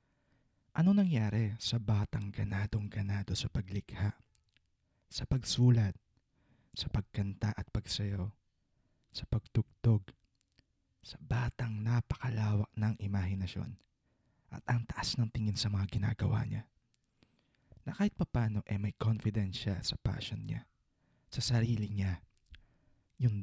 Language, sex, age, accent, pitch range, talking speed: English, male, 20-39, Filipino, 95-115 Hz, 105 wpm